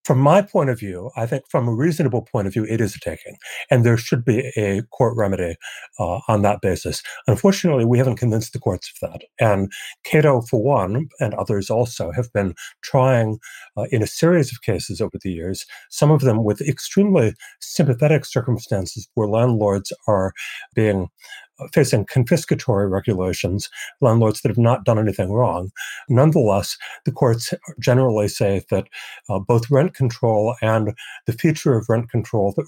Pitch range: 105-135 Hz